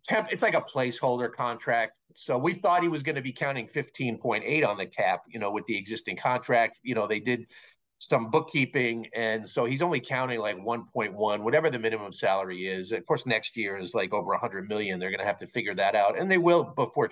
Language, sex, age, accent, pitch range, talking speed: English, male, 50-69, American, 115-160 Hz, 225 wpm